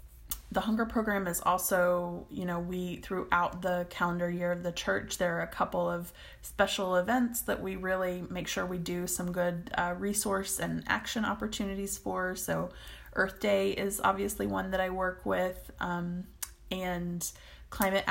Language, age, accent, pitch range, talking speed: English, 20-39, American, 175-200 Hz, 165 wpm